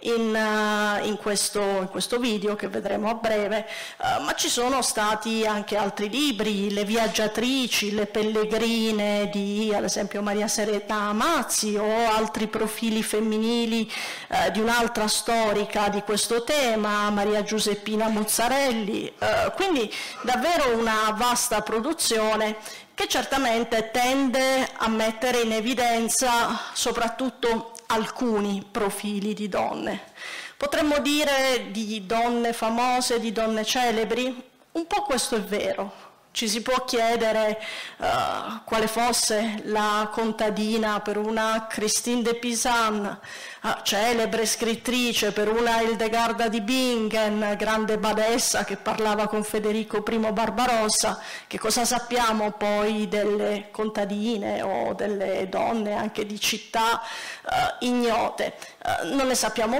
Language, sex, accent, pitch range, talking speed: Italian, female, native, 210-240 Hz, 120 wpm